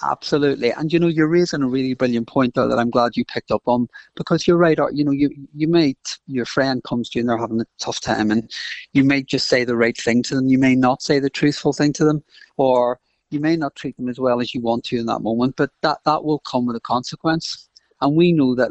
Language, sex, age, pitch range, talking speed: English, male, 40-59, 120-150 Hz, 265 wpm